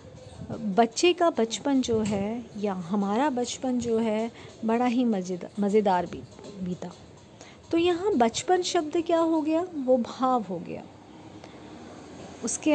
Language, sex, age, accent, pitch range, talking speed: Hindi, female, 50-69, native, 215-295 Hz, 130 wpm